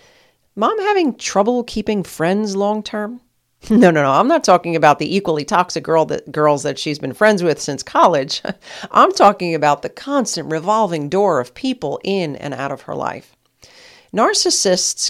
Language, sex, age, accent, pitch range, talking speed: English, female, 40-59, American, 150-215 Hz, 160 wpm